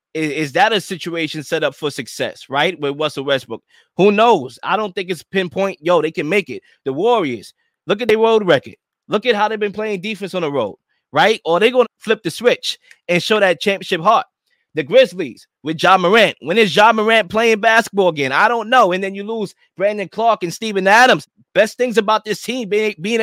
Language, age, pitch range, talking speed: English, 20-39, 175-225 Hz, 220 wpm